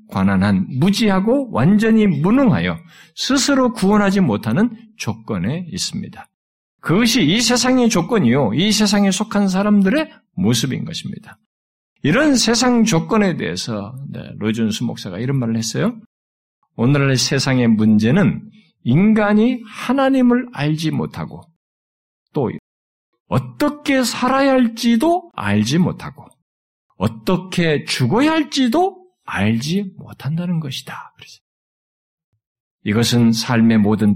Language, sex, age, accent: Korean, male, 50-69, native